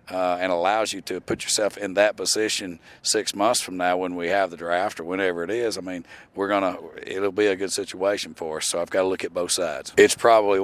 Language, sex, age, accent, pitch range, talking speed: English, male, 40-59, American, 90-100 Hz, 250 wpm